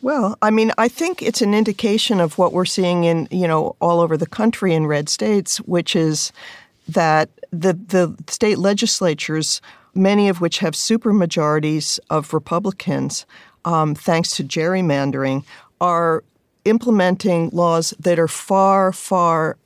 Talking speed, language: 145 wpm, English